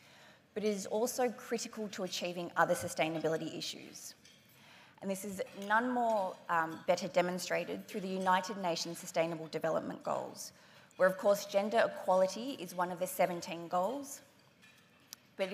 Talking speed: 145 wpm